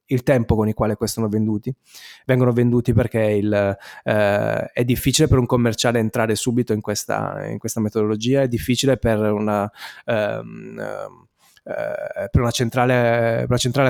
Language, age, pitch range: Italian, 20-39, 110-130 Hz